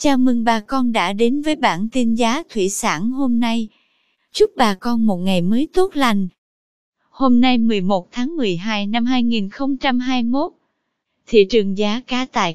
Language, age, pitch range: Vietnamese, 20-39, 225-285 Hz